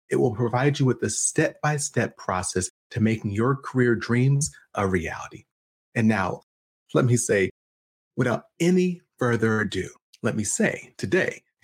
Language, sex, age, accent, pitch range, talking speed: English, male, 30-49, American, 110-155 Hz, 145 wpm